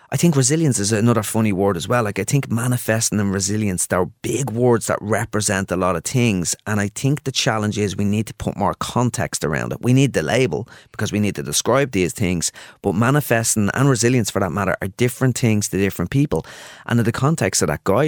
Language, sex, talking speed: English, male, 230 wpm